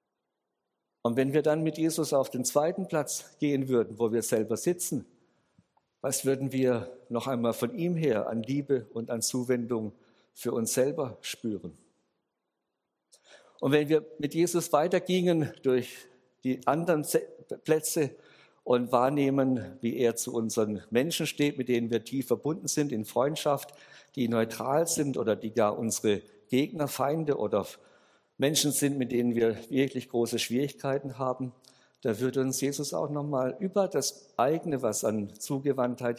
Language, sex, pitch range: German, male, 115-145 Hz